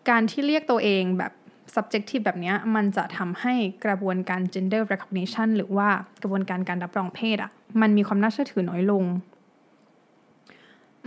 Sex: female